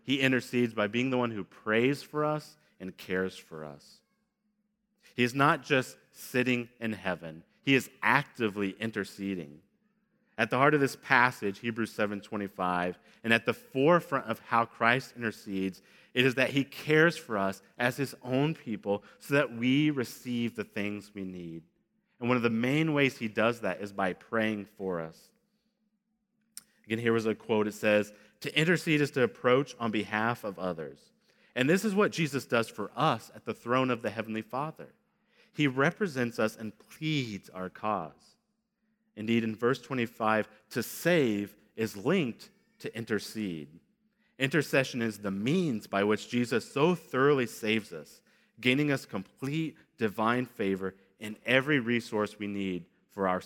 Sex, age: male, 30-49